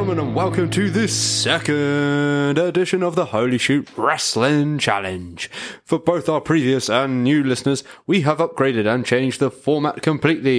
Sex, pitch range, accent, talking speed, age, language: male, 120-150 Hz, British, 155 wpm, 20-39, English